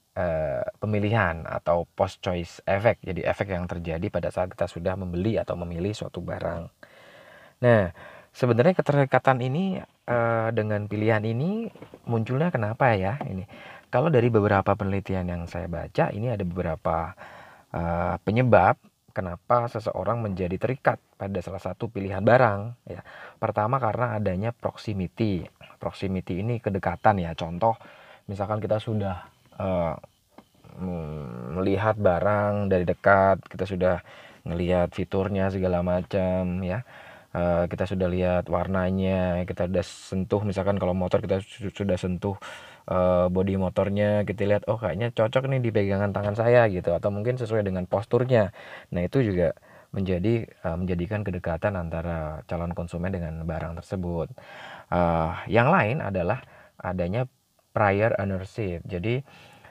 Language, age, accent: Indonesian, 20-39, native